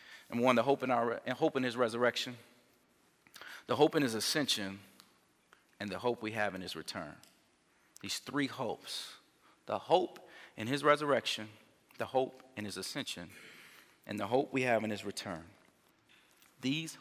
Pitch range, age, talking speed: 115-145 Hz, 40-59, 160 wpm